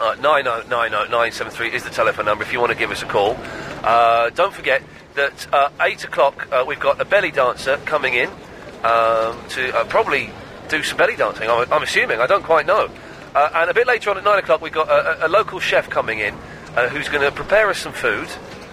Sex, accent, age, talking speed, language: male, British, 40-59, 230 wpm, English